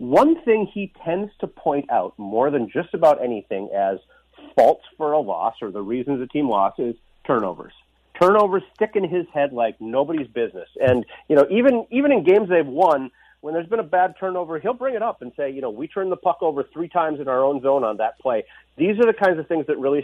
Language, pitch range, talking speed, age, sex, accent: English, 140-215 Hz, 235 wpm, 40-59, male, American